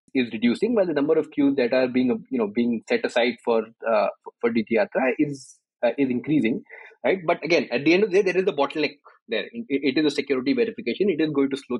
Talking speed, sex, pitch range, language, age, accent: 245 wpm, male, 125-155 Hz, English, 20-39, Indian